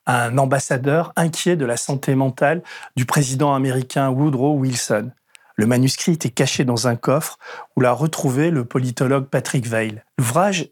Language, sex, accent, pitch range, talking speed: French, male, French, 130-160 Hz, 150 wpm